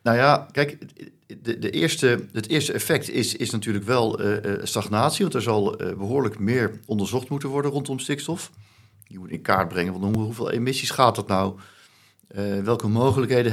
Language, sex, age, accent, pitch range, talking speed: Dutch, male, 50-69, Dutch, 95-115 Hz, 175 wpm